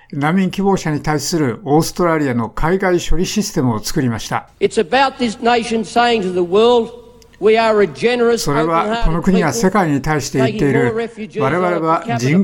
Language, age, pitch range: Japanese, 60-79, 140-185 Hz